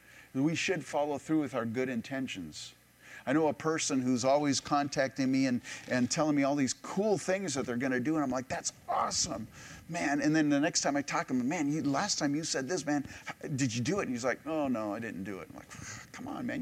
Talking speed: 250 wpm